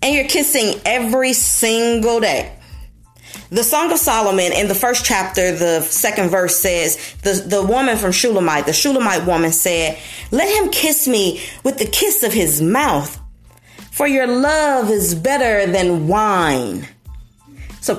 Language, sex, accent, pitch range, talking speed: English, female, American, 215-310 Hz, 150 wpm